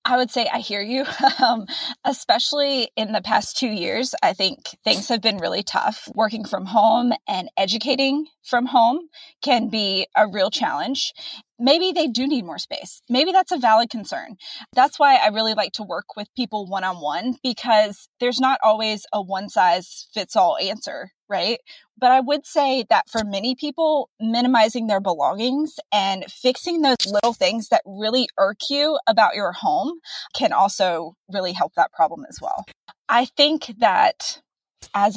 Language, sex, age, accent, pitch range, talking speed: English, female, 20-39, American, 210-280 Hz, 170 wpm